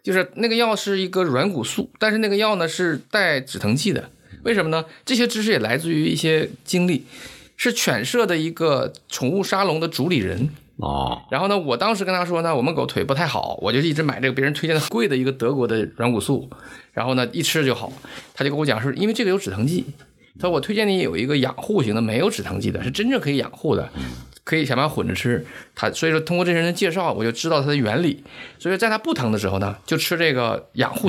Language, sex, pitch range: Chinese, male, 135-210 Hz